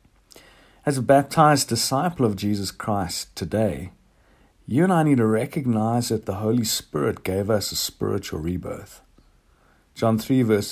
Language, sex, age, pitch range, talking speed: English, male, 50-69, 95-130 Hz, 145 wpm